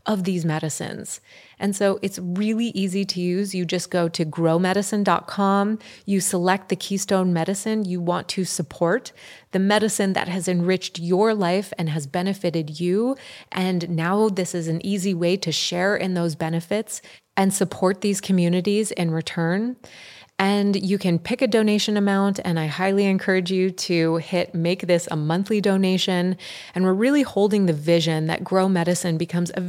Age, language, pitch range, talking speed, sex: 30-49, English, 175-200 Hz, 170 wpm, female